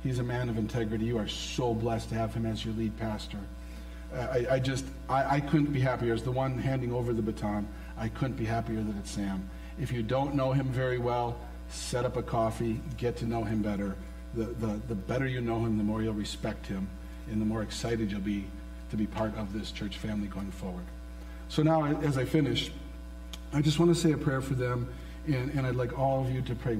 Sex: male